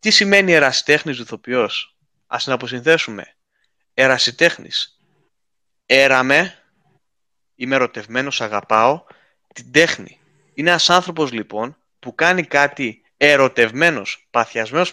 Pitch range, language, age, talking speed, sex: 115-155 Hz, Greek, 30-49, 90 wpm, male